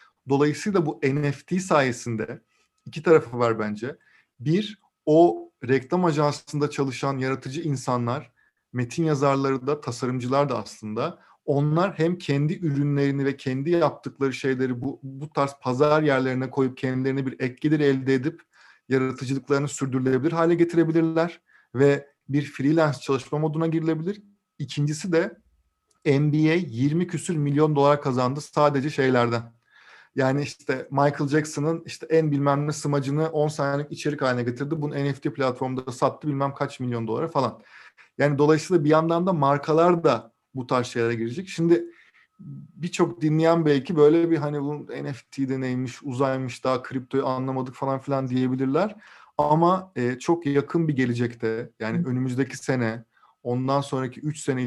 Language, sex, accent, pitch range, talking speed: Turkish, male, native, 130-155 Hz, 135 wpm